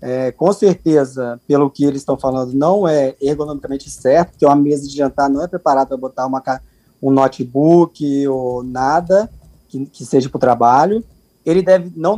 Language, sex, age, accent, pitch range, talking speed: Portuguese, male, 20-39, Brazilian, 140-175 Hz, 165 wpm